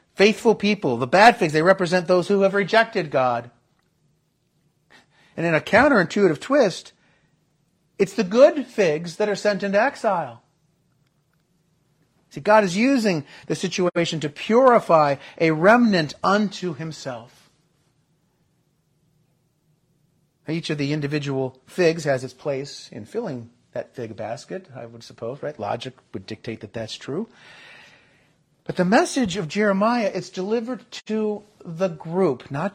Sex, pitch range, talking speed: male, 150-200 Hz, 130 wpm